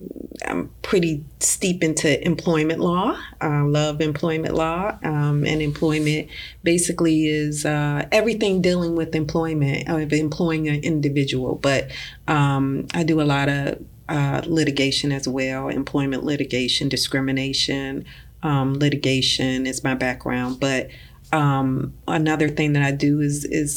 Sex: female